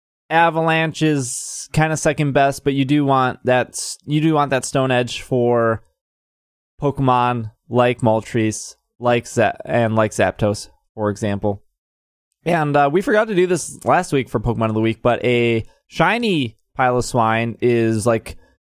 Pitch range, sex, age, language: 115-170 Hz, male, 20-39, English